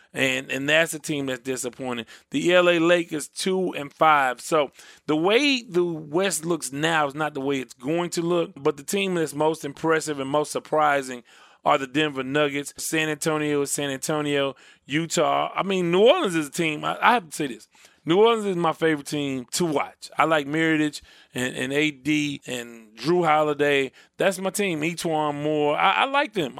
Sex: male